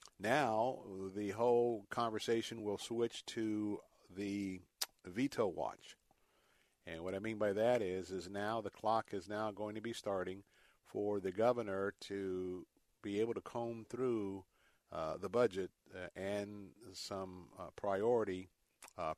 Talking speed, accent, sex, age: 140 wpm, American, male, 50-69